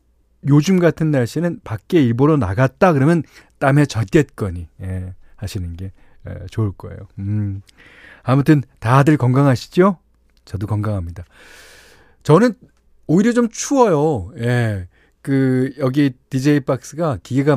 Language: Korean